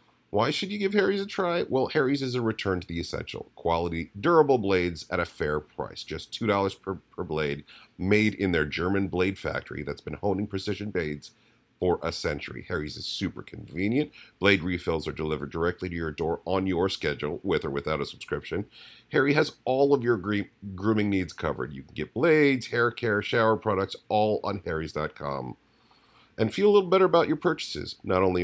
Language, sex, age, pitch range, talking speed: English, male, 40-59, 80-110 Hz, 190 wpm